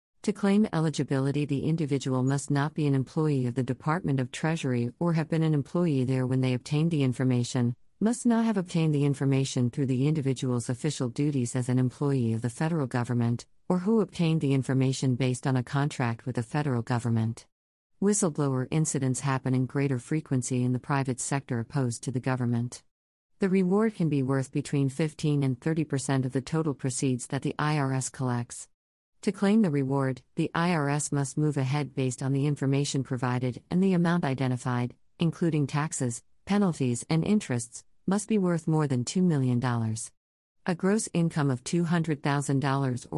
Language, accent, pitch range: English, American, 130-155 Hz